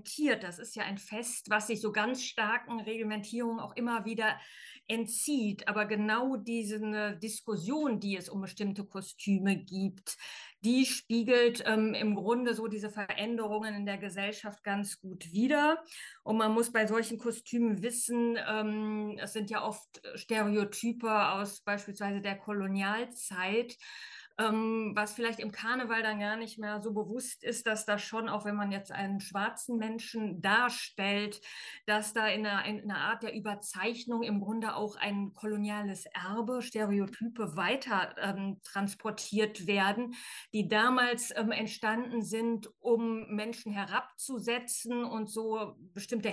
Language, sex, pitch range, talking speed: German, female, 205-230 Hz, 140 wpm